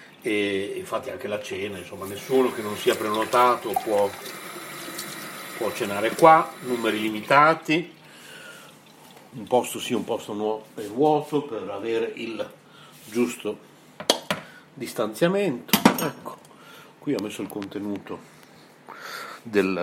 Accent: native